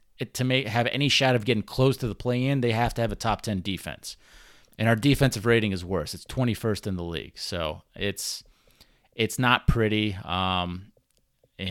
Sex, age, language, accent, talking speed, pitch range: male, 30-49, English, American, 195 wpm, 95-120 Hz